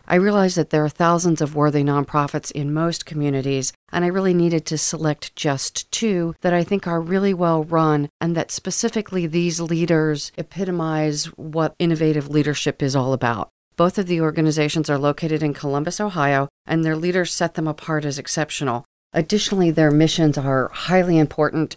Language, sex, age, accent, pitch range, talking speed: English, female, 40-59, American, 150-175 Hz, 170 wpm